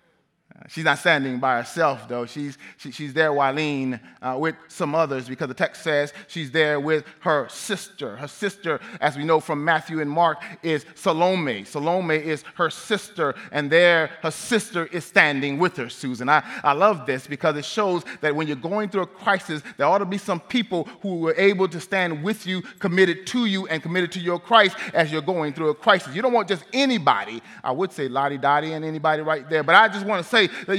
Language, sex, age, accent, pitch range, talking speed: English, male, 30-49, American, 160-240 Hz, 215 wpm